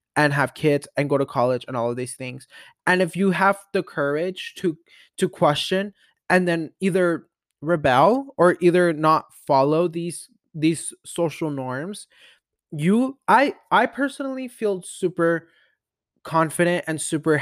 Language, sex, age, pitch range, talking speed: English, male, 20-39, 130-175 Hz, 145 wpm